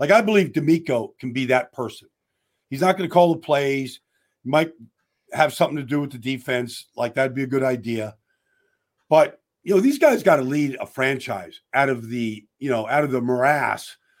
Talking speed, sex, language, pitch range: 205 wpm, male, English, 130-195 Hz